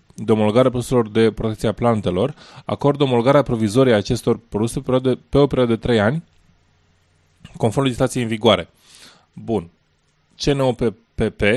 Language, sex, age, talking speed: Romanian, male, 20-39, 130 wpm